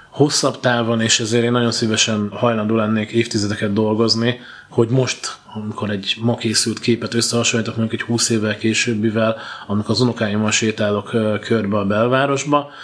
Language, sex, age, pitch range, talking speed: Hungarian, male, 20-39, 110-125 Hz, 150 wpm